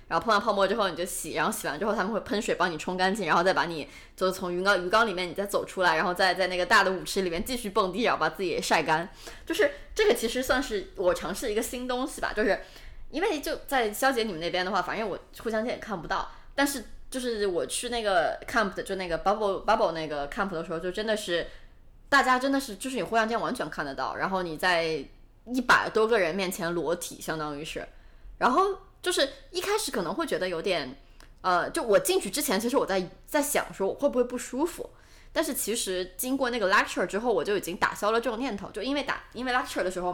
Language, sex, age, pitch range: Chinese, female, 20-39, 180-250 Hz